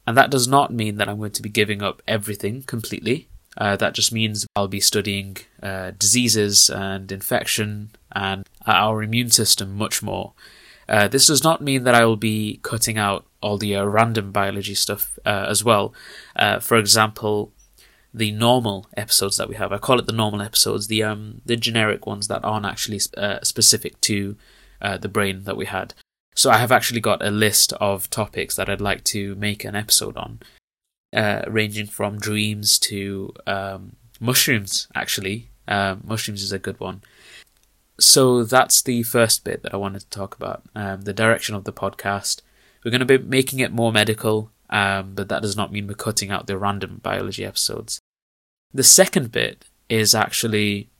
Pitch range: 100-115 Hz